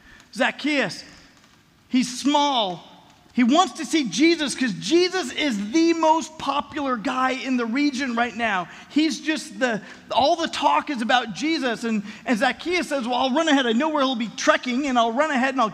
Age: 40-59